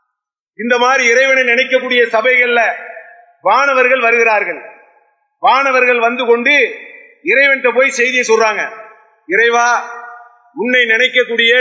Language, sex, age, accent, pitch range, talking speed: English, male, 40-59, Indian, 235-340 Hz, 130 wpm